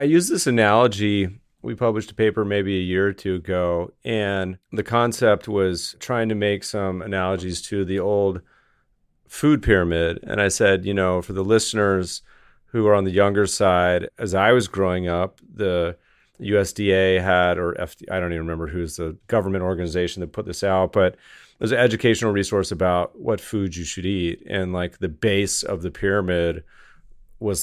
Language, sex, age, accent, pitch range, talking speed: English, male, 30-49, American, 90-110 Hz, 180 wpm